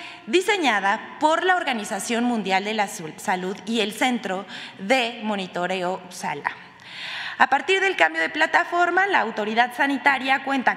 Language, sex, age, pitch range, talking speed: Spanish, female, 20-39, 220-310 Hz, 135 wpm